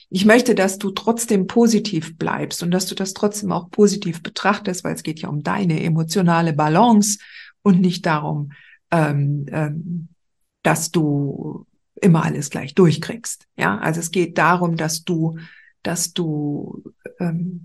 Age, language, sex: 50-69, German, female